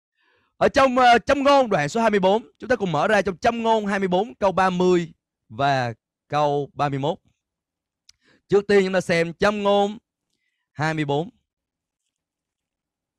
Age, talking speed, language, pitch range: 20-39, 135 wpm, Vietnamese, 155-250 Hz